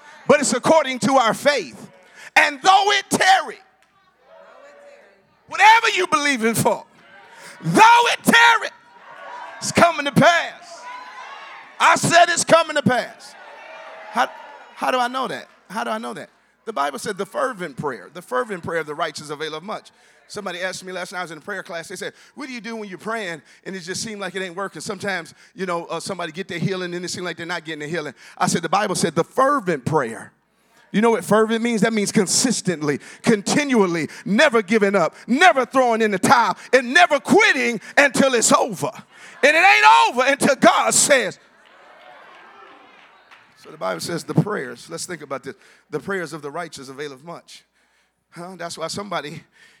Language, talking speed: English, 190 wpm